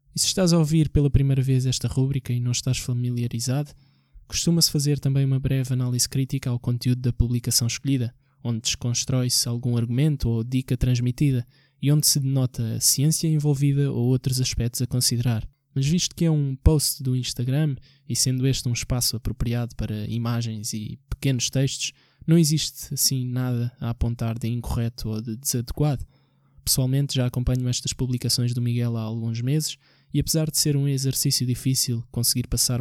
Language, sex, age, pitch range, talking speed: Portuguese, male, 20-39, 120-140 Hz, 170 wpm